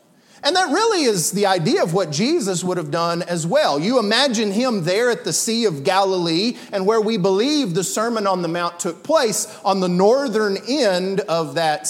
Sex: male